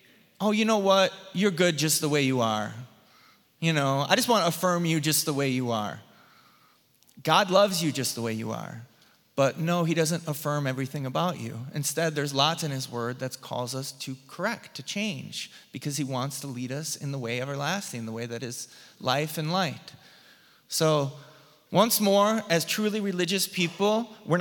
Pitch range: 140-190 Hz